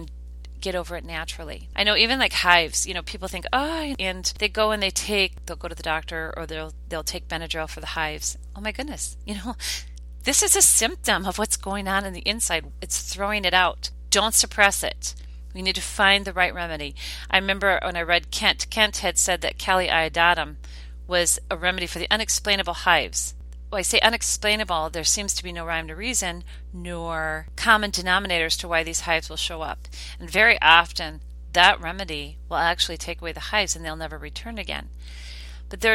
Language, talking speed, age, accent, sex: English, 205 wpm, 40-59, American, female